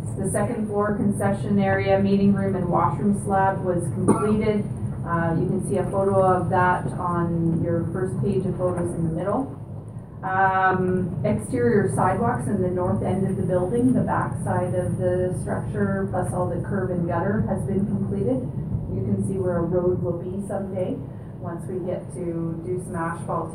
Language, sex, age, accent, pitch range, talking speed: English, female, 30-49, American, 155-180 Hz, 180 wpm